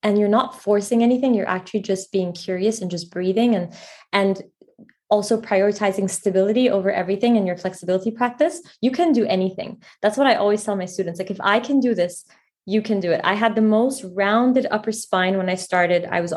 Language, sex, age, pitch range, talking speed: English, female, 20-39, 190-225 Hz, 210 wpm